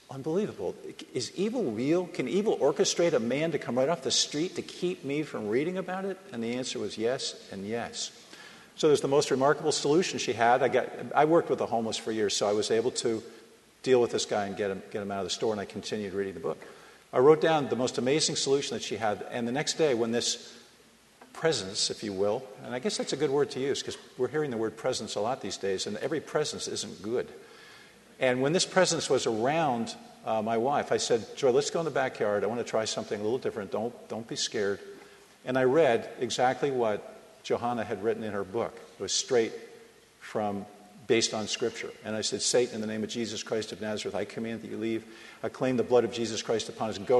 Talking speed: 240 wpm